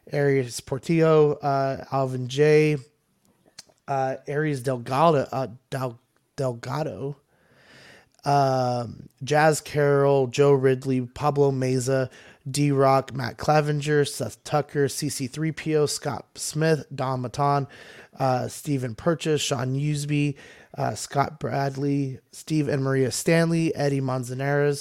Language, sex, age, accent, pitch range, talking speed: English, male, 30-49, American, 130-150 Hz, 100 wpm